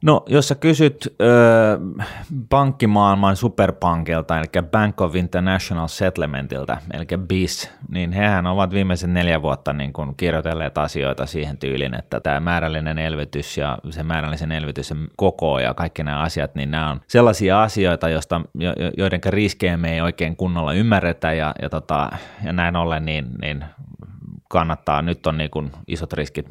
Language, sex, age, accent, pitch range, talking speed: Finnish, male, 30-49, native, 80-95 Hz, 150 wpm